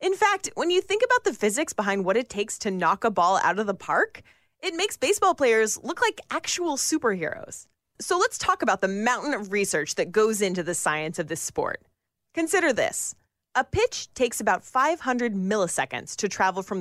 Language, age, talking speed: English, 30-49, 195 wpm